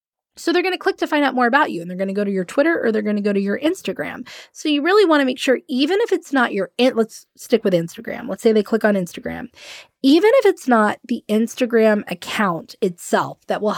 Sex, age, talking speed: female, 20-39, 255 wpm